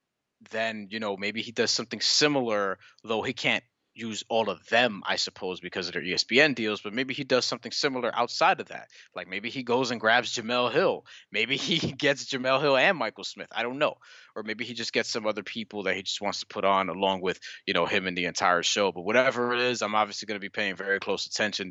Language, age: English, 20-39